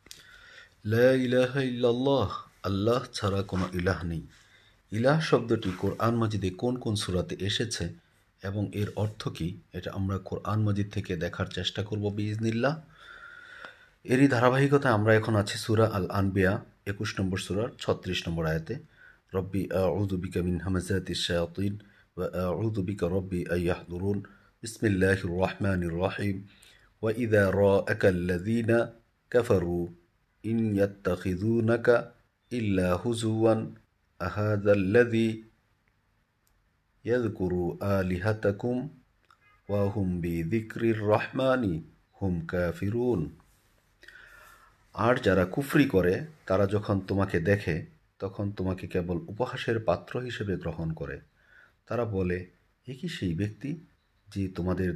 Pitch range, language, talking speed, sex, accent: 90-115 Hz, Bengali, 80 wpm, male, native